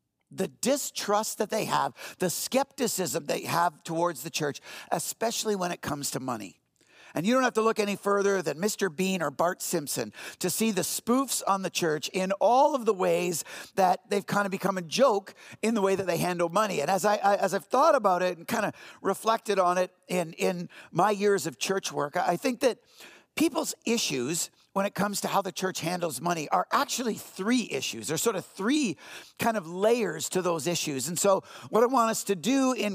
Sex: male